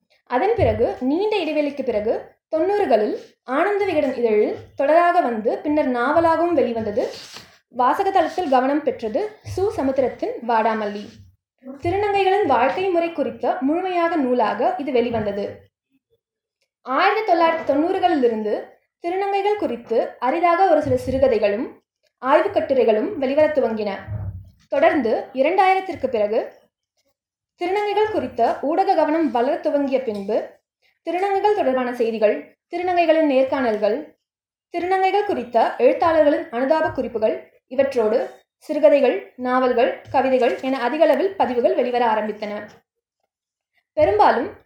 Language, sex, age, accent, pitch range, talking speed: Tamil, female, 20-39, native, 245-355 Hz, 85 wpm